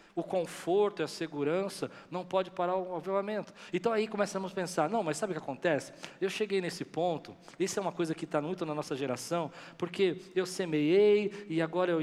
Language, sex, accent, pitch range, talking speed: Portuguese, male, Brazilian, 145-185 Hz, 205 wpm